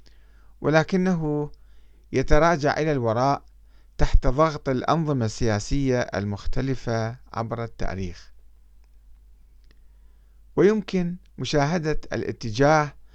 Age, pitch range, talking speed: 50-69, 100-145 Hz, 65 wpm